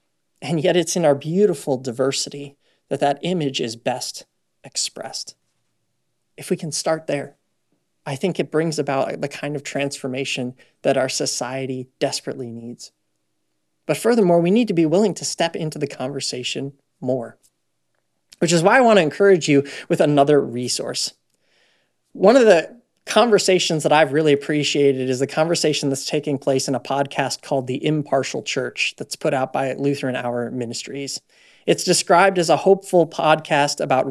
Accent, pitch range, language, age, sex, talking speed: American, 130-160 Hz, English, 20-39, male, 160 wpm